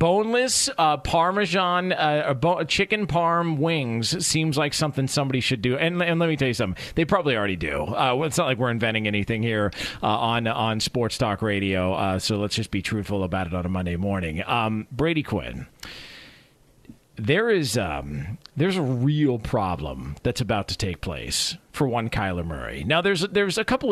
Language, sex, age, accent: English, male, 40-59, American